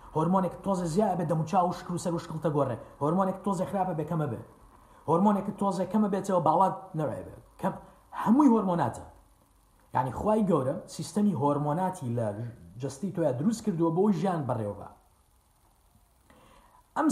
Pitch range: 140-210 Hz